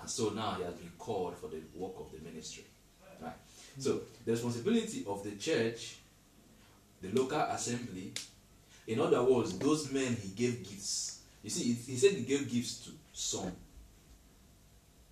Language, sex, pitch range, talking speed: English, male, 105-140 Hz, 165 wpm